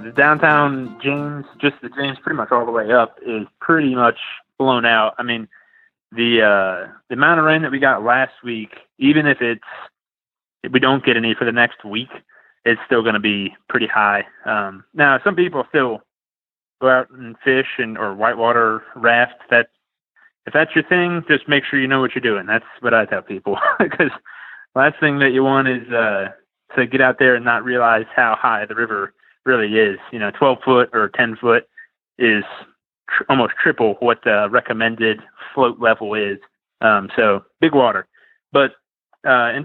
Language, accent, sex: English, American, male